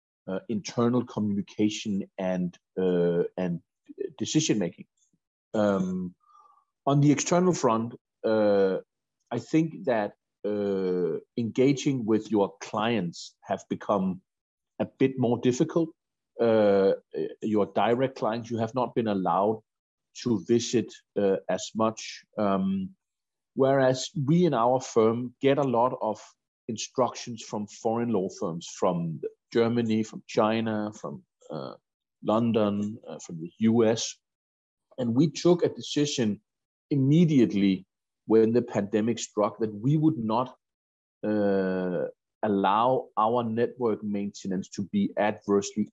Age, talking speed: 40-59, 115 wpm